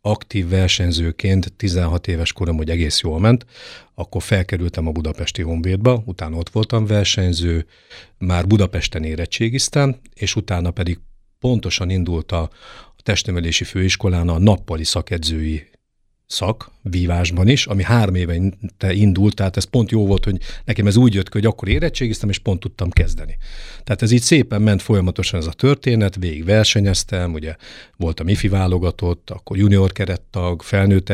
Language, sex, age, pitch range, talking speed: Hungarian, male, 50-69, 85-105 Hz, 145 wpm